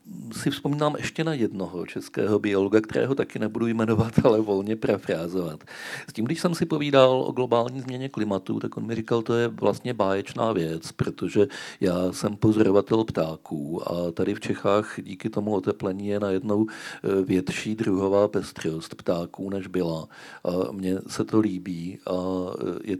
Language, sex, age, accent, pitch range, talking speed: Czech, male, 50-69, native, 90-110 Hz, 155 wpm